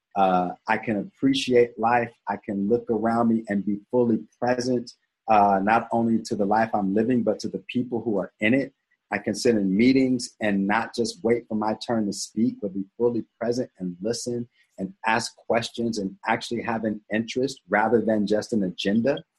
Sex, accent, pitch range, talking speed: male, American, 105-125 Hz, 195 wpm